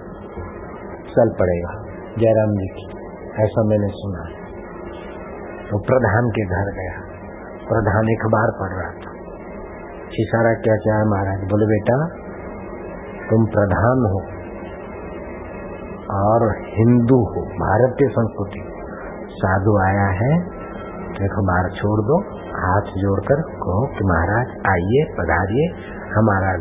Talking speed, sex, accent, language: 110 wpm, male, native, Hindi